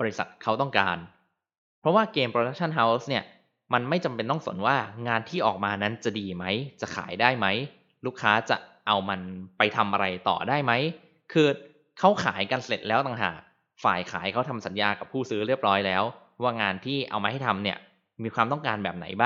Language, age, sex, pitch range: Thai, 20-39, male, 100-130 Hz